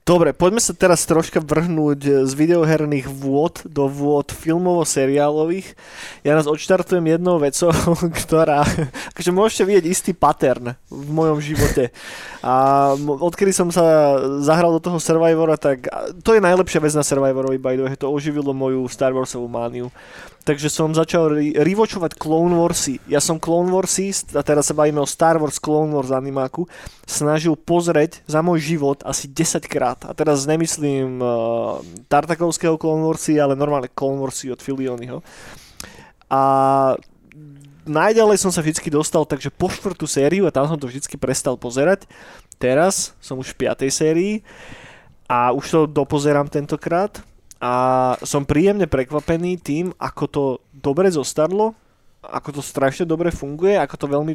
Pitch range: 140-170 Hz